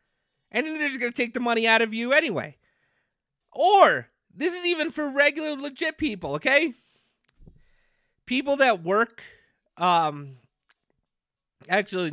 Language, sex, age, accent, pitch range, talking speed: English, male, 30-49, American, 160-245 Hz, 135 wpm